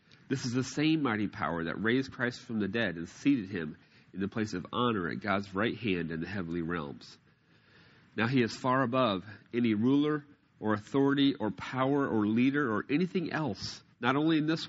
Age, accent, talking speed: 40-59, American, 195 wpm